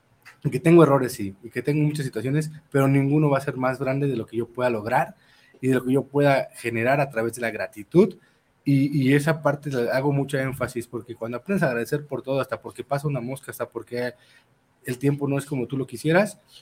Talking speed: 235 wpm